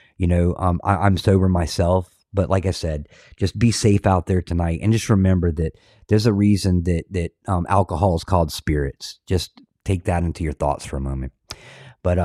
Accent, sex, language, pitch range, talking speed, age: American, male, English, 85-100 Hz, 200 wpm, 30-49